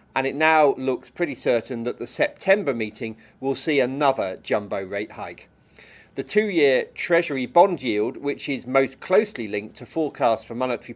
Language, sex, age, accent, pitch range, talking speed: English, male, 40-59, British, 115-150 Hz, 165 wpm